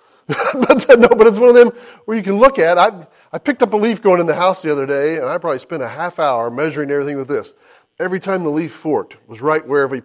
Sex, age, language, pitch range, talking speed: male, 40-59, English, 145-205 Hz, 270 wpm